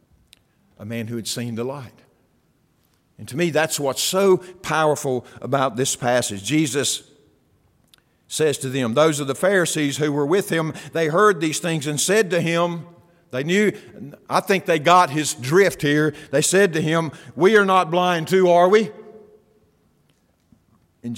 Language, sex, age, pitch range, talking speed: English, male, 50-69, 130-200 Hz, 165 wpm